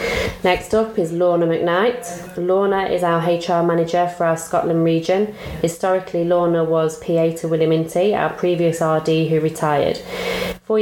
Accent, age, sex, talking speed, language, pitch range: British, 20-39, female, 145 wpm, English, 160-180 Hz